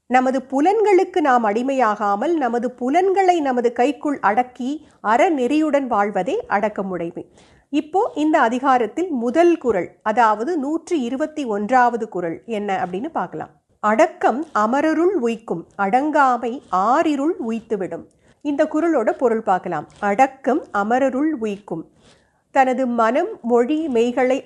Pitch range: 215-310 Hz